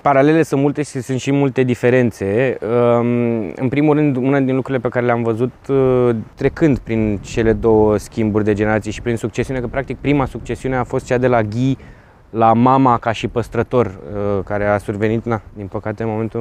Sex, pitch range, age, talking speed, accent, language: male, 110-140 Hz, 20-39, 185 wpm, native, Romanian